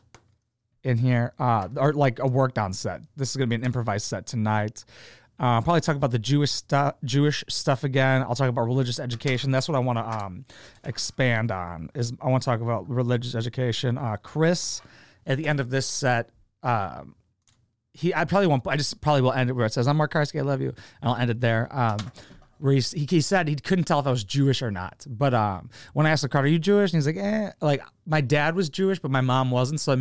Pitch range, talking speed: 120-150 Hz, 240 wpm